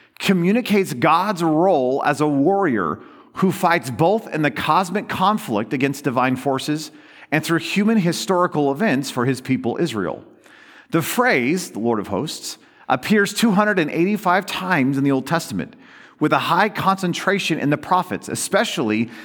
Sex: male